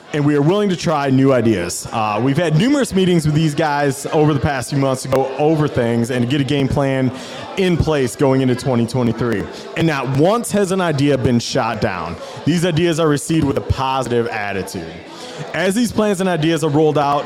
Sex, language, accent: male, English, American